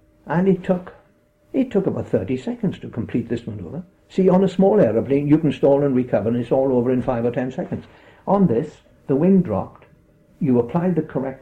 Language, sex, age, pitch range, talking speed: English, male, 60-79, 120-180 Hz, 210 wpm